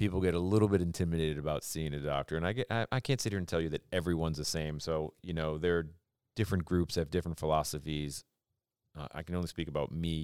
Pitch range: 80-95 Hz